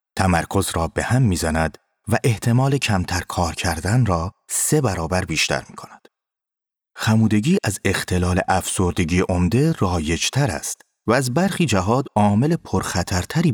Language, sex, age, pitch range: Persian, male, 30-49, 85-125 Hz